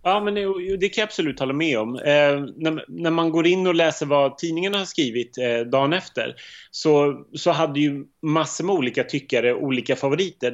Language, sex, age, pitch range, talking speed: Swedish, male, 30-49, 125-160 Hz, 195 wpm